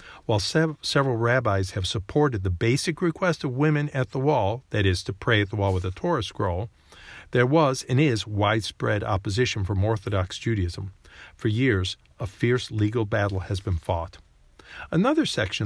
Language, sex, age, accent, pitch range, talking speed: English, male, 50-69, American, 100-130 Hz, 170 wpm